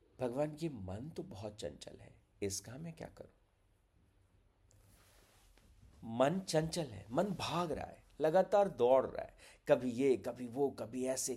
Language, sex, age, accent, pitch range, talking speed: Hindi, male, 50-69, native, 95-135 Hz, 150 wpm